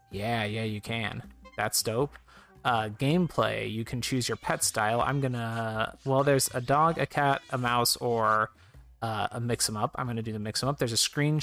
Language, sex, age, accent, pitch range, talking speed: English, male, 30-49, American, 110-140 Hz, 205 wpm